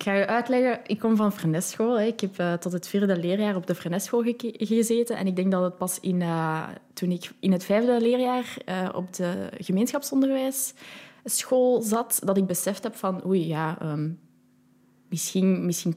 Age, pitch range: 20-39, 170-230 Hz